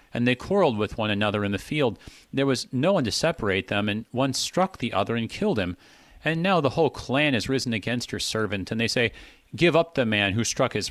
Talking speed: 240 wpm